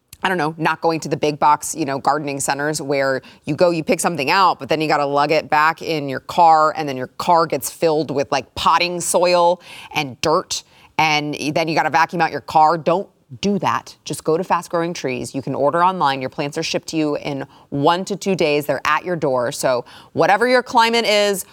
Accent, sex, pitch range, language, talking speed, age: American, female, 150-190 Hz, English, 235 wpm, 30-49